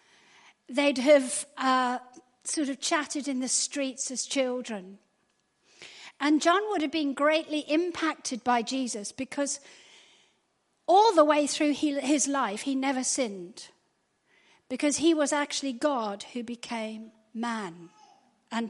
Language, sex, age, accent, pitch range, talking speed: English, female, 40-59, British, 250-315 Hz, 125 wpm